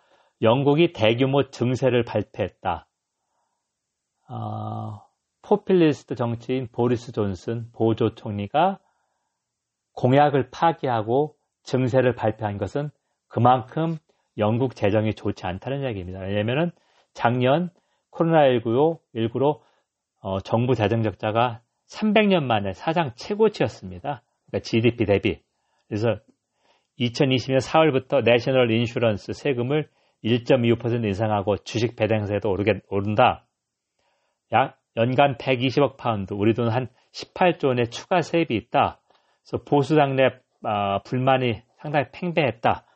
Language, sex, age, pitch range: Korean, male, 40-59, 110-145 Hz